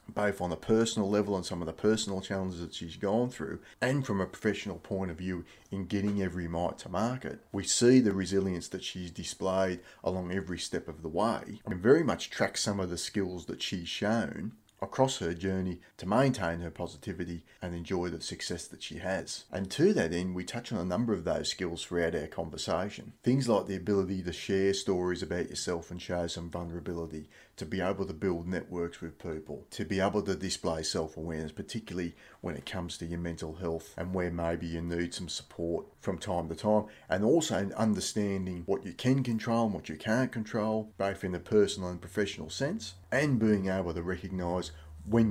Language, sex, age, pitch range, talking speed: English, male, 30-49, 85-100 Hz, 200 wpm